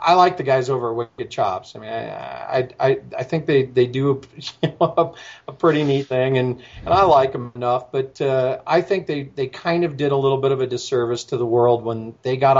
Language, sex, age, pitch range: English, male, 40-59, 120-150 Hz